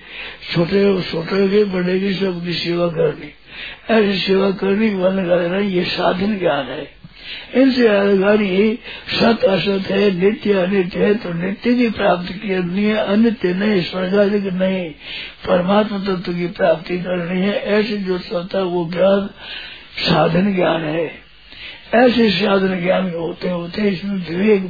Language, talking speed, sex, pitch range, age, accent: Hindi, 150 wpm, male, 180-205 Hz, 60-79, native